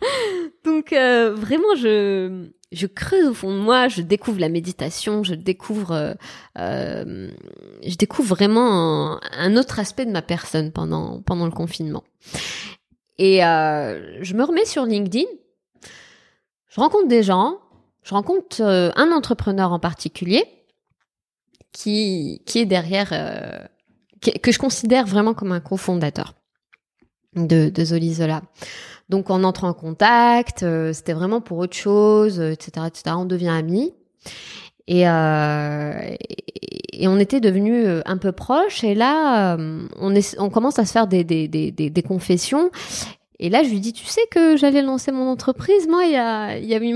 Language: French